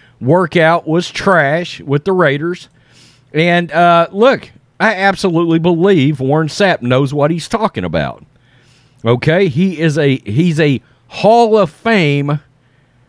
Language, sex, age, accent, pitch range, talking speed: English, male, 40-59, American, 120-170 Hz, 130 wpm